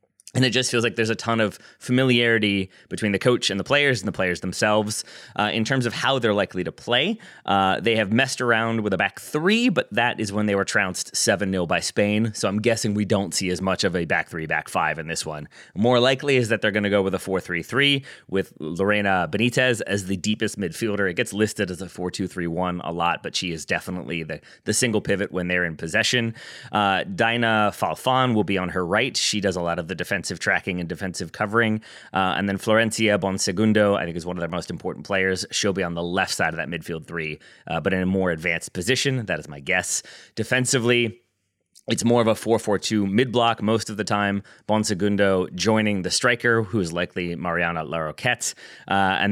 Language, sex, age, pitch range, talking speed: English, male, 30-49, 95-115 Hz, 220 wpm